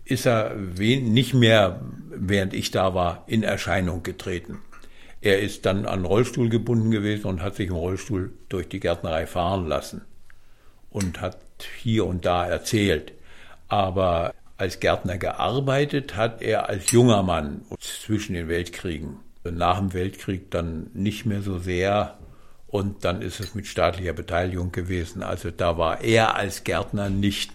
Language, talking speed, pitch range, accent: German, 150 wpm, 90-125 Hz, German